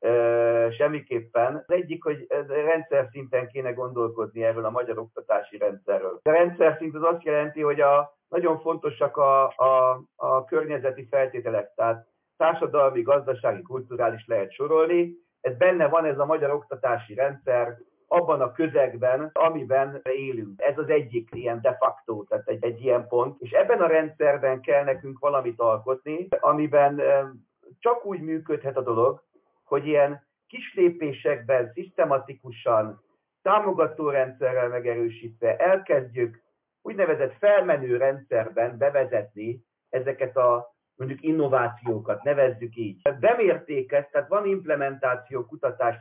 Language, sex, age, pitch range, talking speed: Hungarian, male, 50-69, 125-160 Hz, 125 wpm